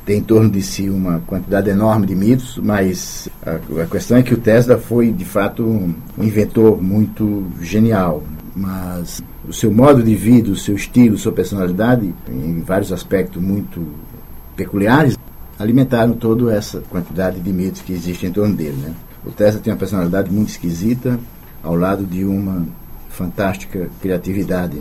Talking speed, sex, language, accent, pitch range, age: 160 wpm, male, Portuguese, Brazilian, 90-110 Hz, 50-69